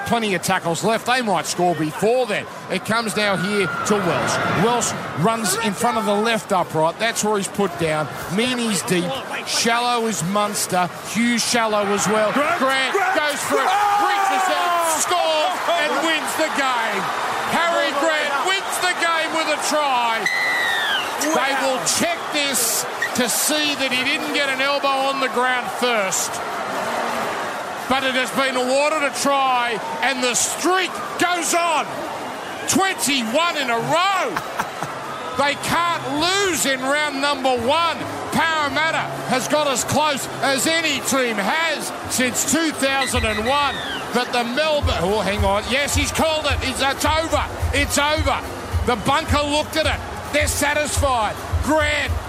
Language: English